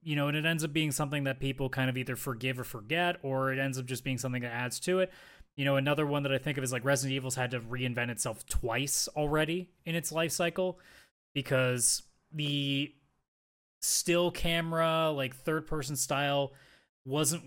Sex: male